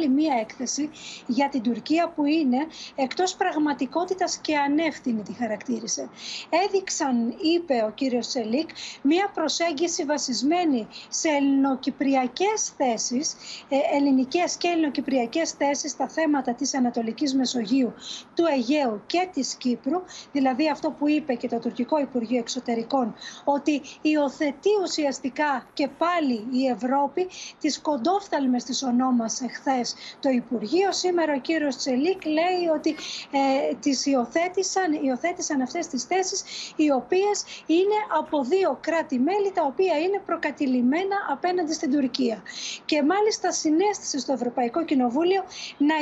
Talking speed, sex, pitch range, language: 120 wpm, female, 255-340 Hz, Greek